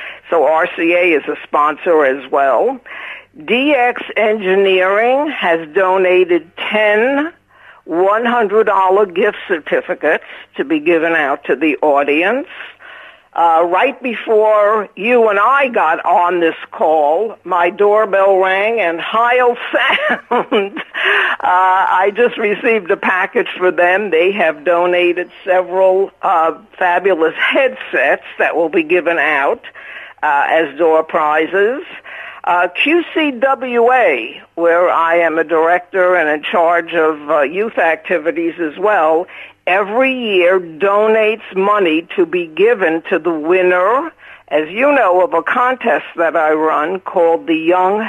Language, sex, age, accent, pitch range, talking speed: English, female, 60-79, American, 170-220 Hz, 125 wpm